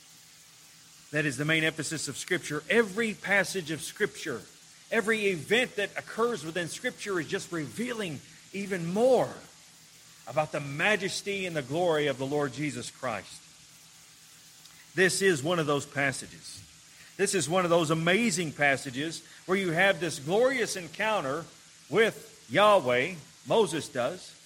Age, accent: 40-59, American